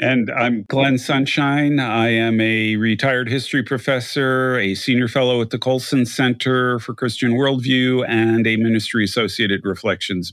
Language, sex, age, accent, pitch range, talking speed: English, male, 40-59, American, 110-135 Hz, 145 wpm